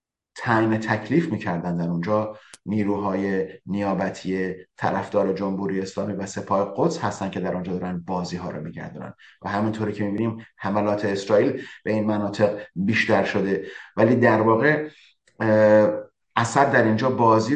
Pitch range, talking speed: 100-115 Hz, 135 wpm